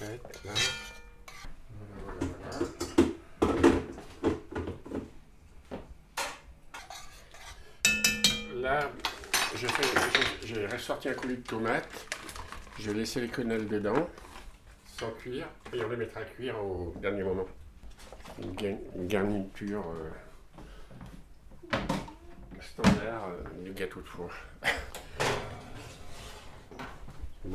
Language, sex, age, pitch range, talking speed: French, male, 60-79, 80-110 Hz, 80 wpm